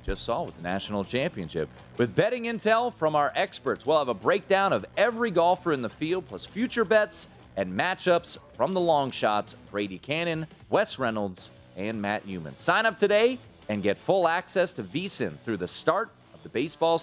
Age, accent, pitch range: 30-49, American, 115-195 Hz